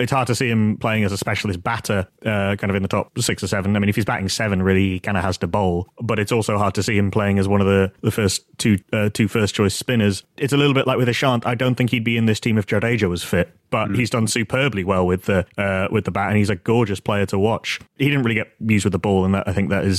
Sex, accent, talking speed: male, British, 305 wpm